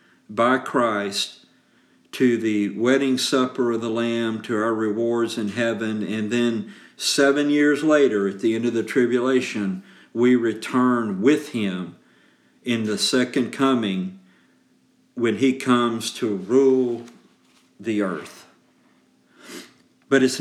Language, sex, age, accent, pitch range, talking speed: English, male, 50-69, American, 115-135 Hz, 125 wpm